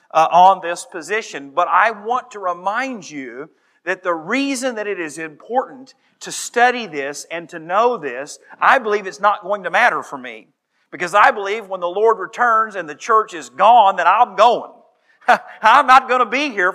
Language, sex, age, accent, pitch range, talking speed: English, male, 40-59, American, 180-235 Hz, 195 wpm